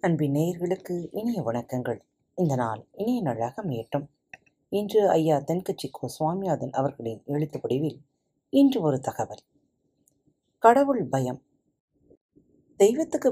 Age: 30-49